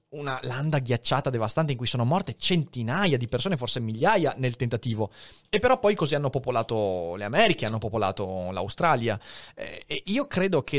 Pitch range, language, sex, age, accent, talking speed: 115-150 Hz, Italian, male, 30-49, native, 170 wpm